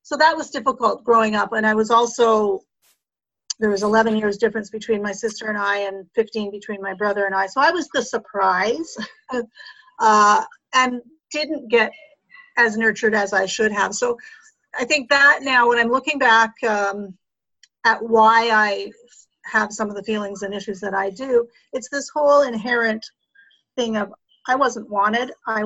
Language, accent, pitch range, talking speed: English, American, 210-255 Hz, 175 wpm